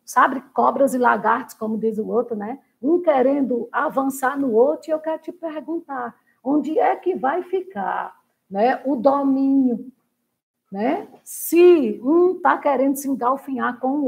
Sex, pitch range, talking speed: female, 230-280 Hz, 155 wpm